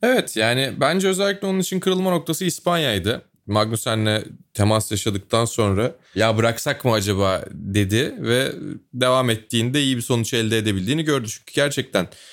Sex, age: male, 30-49